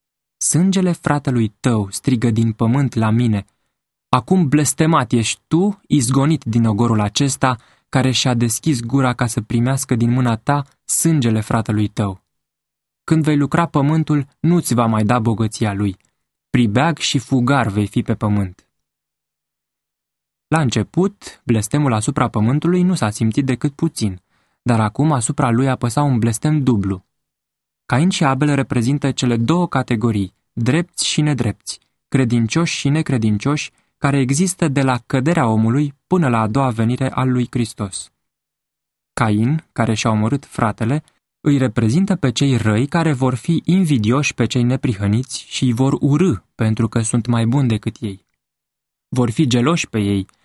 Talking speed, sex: 150 wpm, male